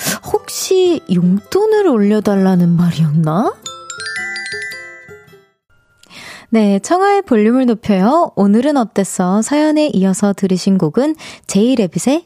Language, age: Korean, 20-39